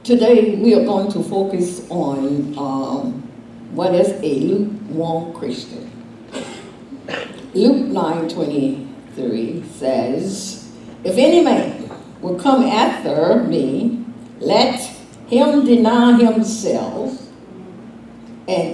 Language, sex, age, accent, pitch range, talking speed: English, female, 60-79, American, 195-265 Hz, 95 wpm